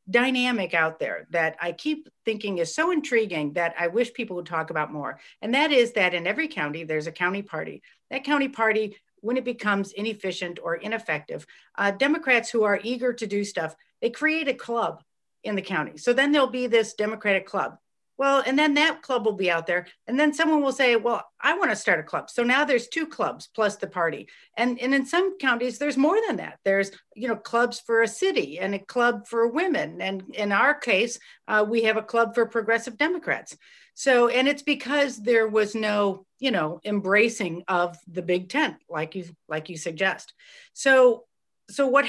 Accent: American